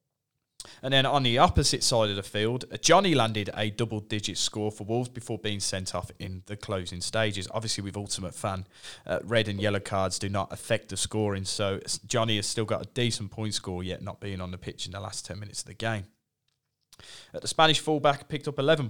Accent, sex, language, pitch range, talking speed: British, male, English, 100-135 Hz, 215 wpm